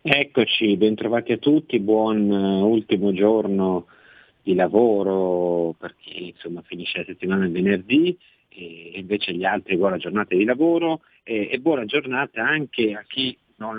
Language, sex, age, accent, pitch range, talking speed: Italian, male, 50-69, native, 90-110 Hz, 150 wpm